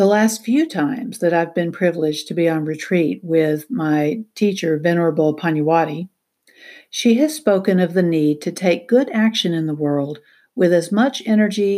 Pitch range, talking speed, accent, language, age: 160-215 Hz, 175 wpm, American, English, 60-79